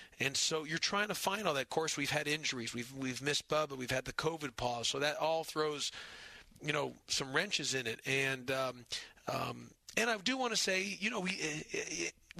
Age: 40-59